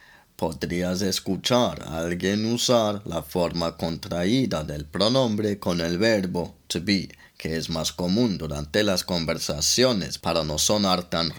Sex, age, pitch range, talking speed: male, 30-49, 80-100 Hz, 135 wpm